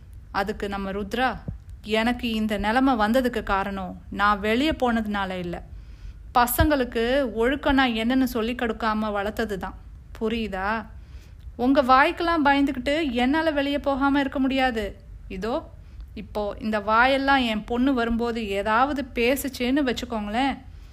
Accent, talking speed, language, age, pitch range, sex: native, 105 wpm, Tamil, 30-49, 205-265 Hz, female